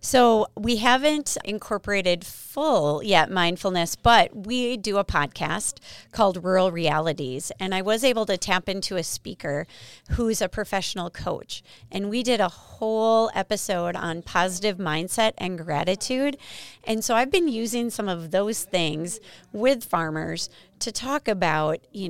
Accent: American